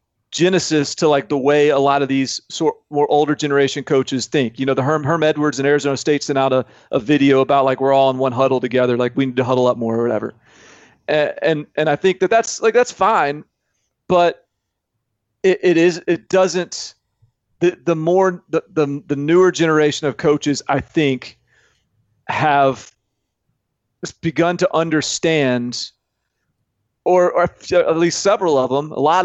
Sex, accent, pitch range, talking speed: male, American, 130-165 Hz, 180 wpm